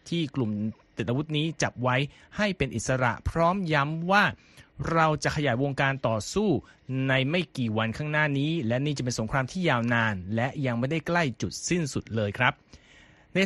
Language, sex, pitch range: Thai, male, 120-155 Hz